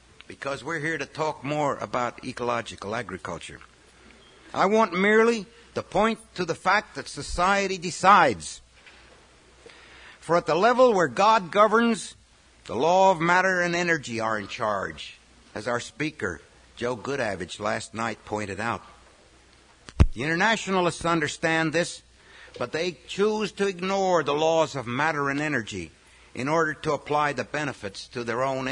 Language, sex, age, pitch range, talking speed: English, male, 60-79, 120-190 Hz, 145 wpm